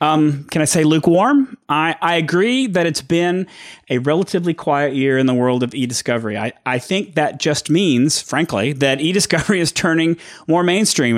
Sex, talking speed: male, 175 wpm